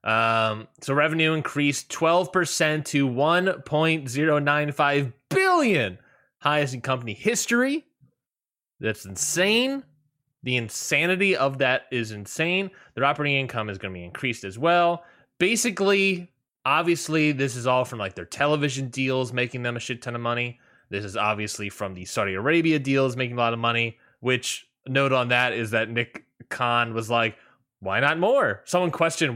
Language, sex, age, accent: English, male, 20-39, American